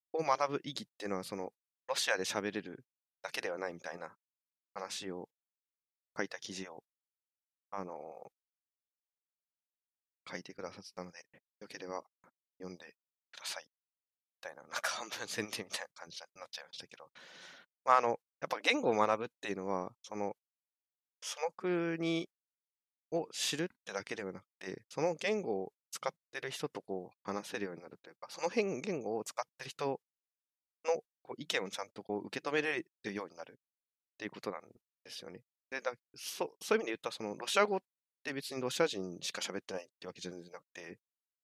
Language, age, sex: Japanese, 20-39, male